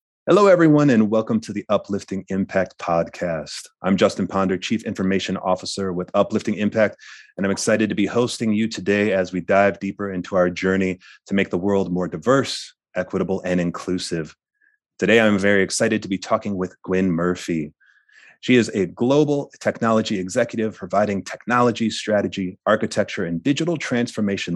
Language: English